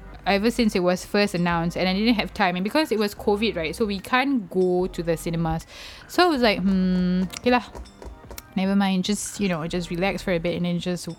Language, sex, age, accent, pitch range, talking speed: English, female, 20-39, Malaysian, 175-225 Hz, 235 wpm